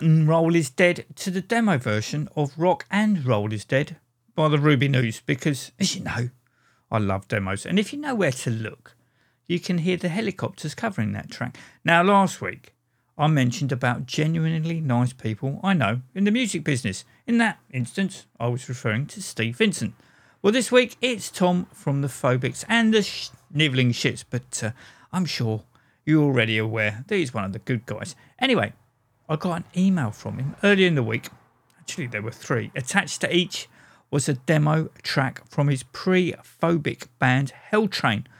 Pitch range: 120-175 Hz